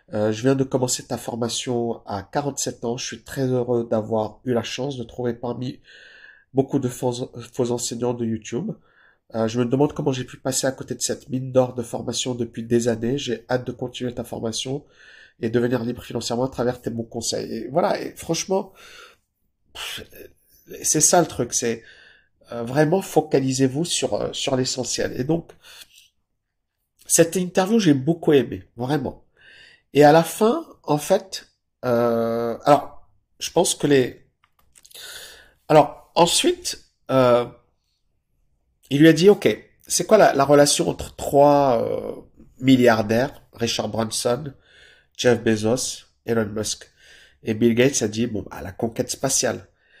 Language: French